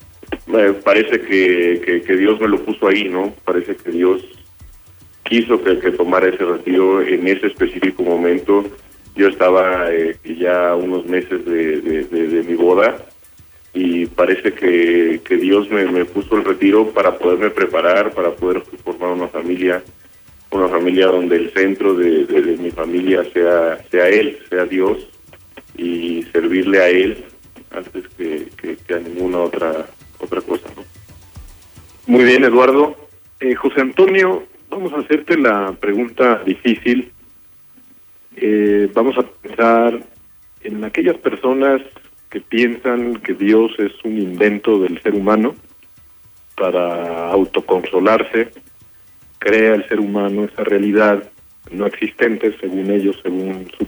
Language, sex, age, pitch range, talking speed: Spanish, male, 30-49, 90-120 Hz, 140 wpm